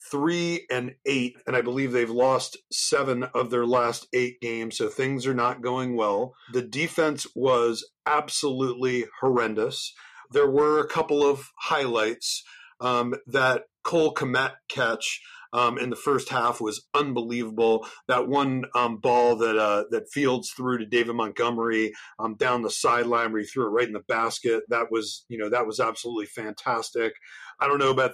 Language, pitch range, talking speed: English, 115-135 Hz, 165 wpm